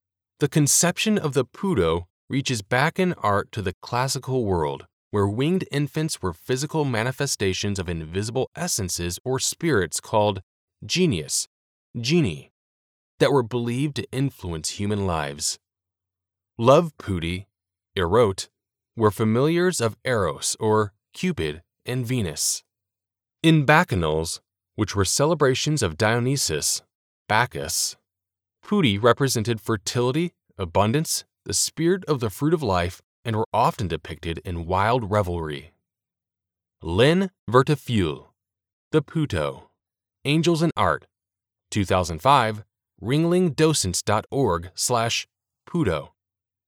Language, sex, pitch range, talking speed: English, male, 95-135 Hz, 105 wpm